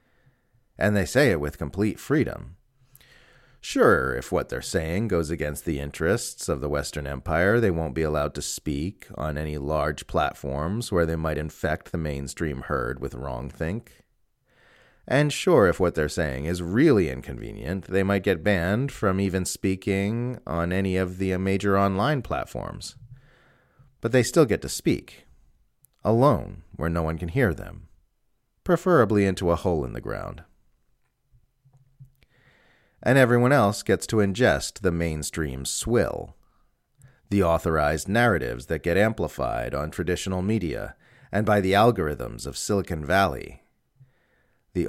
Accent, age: American, 30-49